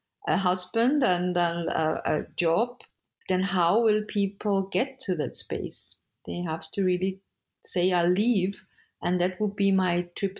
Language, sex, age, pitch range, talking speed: English, female, 50-69, 170-195 Hz, 155 wpm